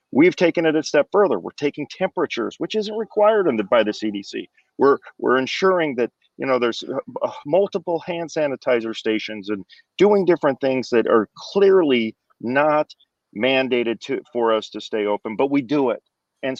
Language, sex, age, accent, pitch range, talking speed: English, male, 40-59, American, 120-190 Hz, 175 wpm